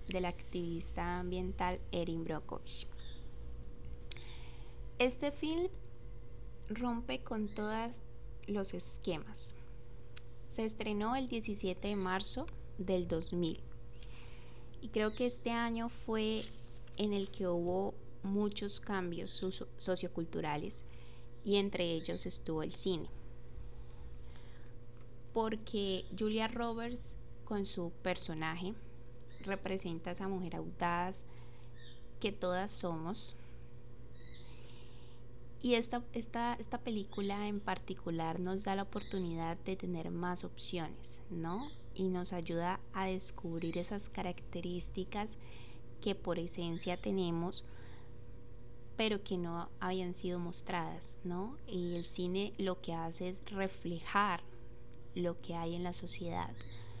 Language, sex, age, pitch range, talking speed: Spanish, female, 20-39, 120-195 Hz, 105 wpm